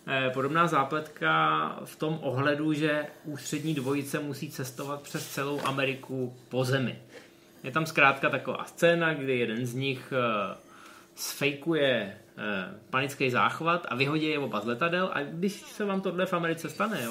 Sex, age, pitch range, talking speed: male, 20-39, 125-150 Hz, 145 wpm